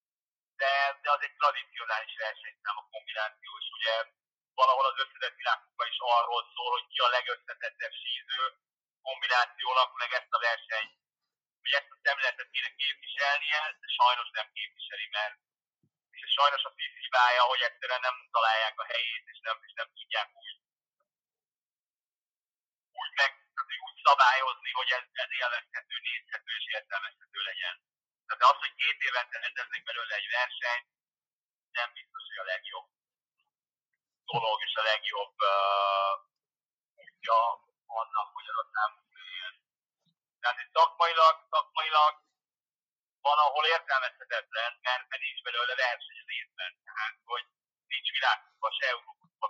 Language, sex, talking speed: Hungarian, male, 130 wpm